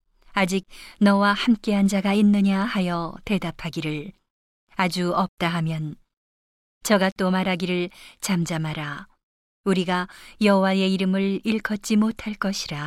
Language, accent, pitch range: Korean, native, 175-205 Hz